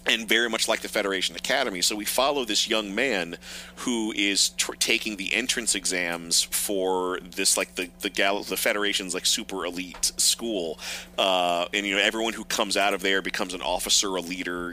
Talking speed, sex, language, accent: 190 wpm, male, English, American